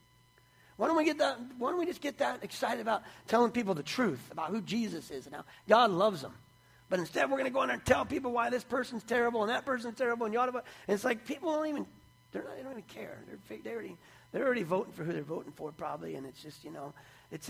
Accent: American